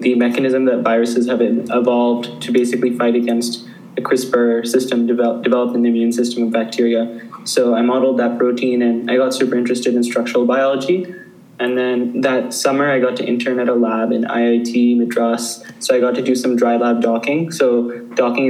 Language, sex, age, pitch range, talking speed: English, male, 10-29, 120-130 Hz, 190 wpm